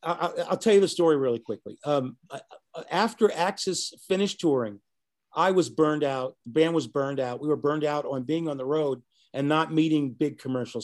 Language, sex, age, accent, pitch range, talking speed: English, male, 50-69, American, 145-195 Hz, 195 wpm